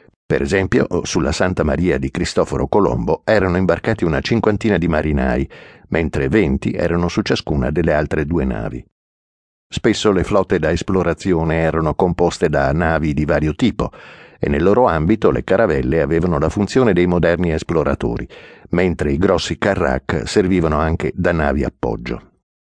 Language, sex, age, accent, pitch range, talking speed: Italian, male, 50-69, native, 75-95 Hz, 150 wpm